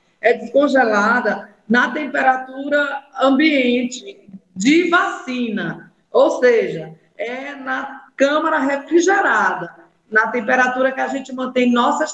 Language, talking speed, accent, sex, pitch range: Portuguese, 100 wpm, Brazilian, female, 230-290 Hz